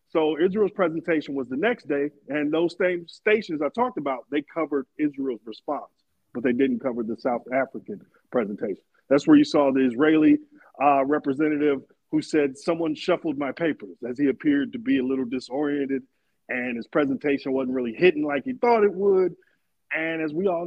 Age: 40-59